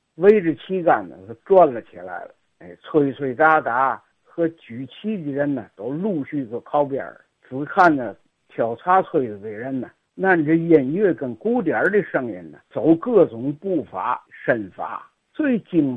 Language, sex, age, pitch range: Chinese, male, 60-79, 150-250 Hz